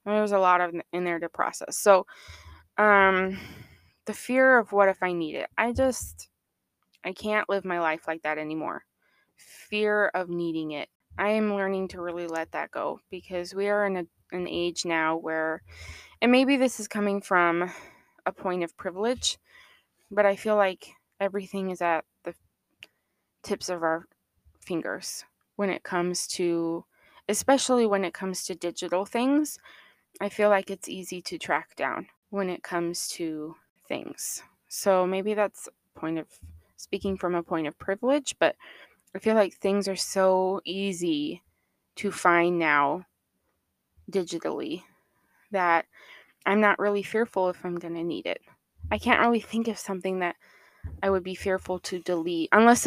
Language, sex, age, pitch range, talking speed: English, female, 20-39, 170-205 Hz, 165 wpm